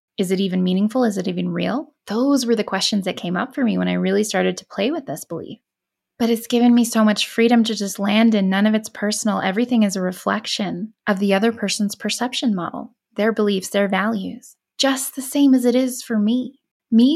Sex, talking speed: female, 225 wpm